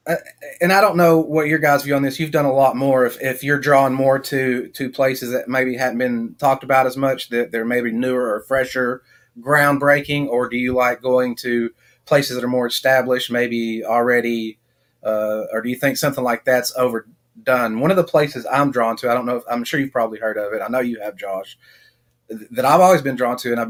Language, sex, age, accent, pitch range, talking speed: English, male, 30-49, American, 120-145 Hz, 235 wpm